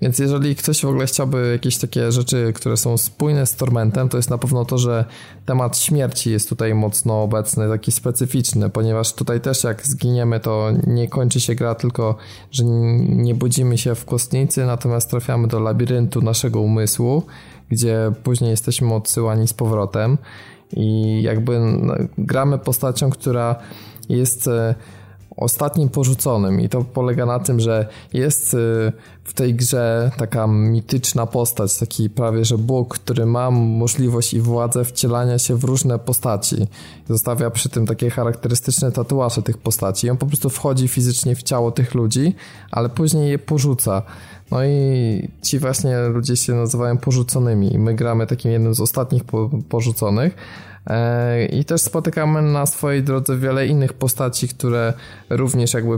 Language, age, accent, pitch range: Polish, 20-39, native, 115-130 Hz